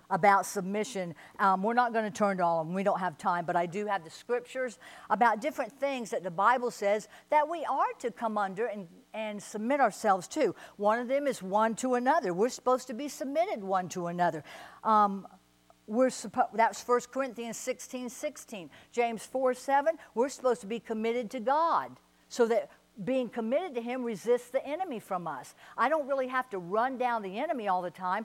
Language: English